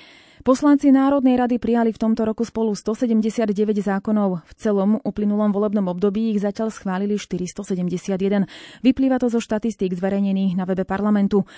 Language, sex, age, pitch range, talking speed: Slovak, female, 30-49, 195-230 Hz, 140 wpm